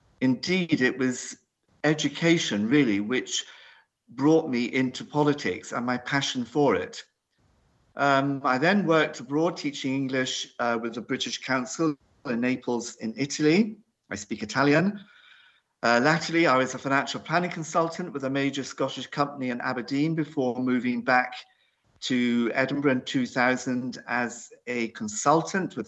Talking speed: 140 wpm